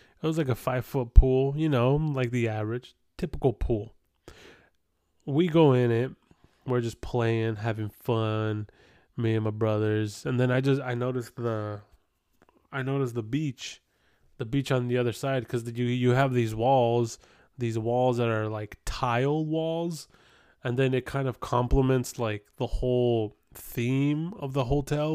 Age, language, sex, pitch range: 20-39, English, male, 115-135 Hz